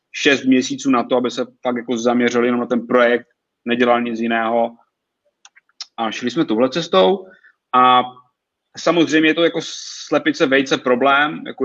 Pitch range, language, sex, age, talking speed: 120-145 Hz, Czech, male, 30-49, 155 wpm